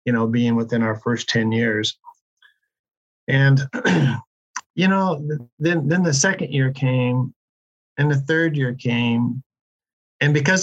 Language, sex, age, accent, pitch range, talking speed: English, male, 50-69, American, 120-145 Hz, 140 wpm